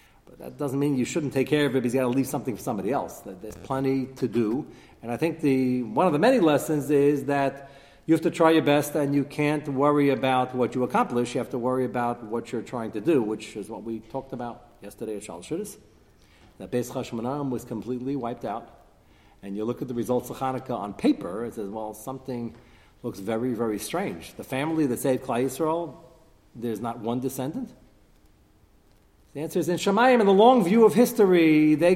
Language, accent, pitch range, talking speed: English, American, 120-160 Hz, 215 wpm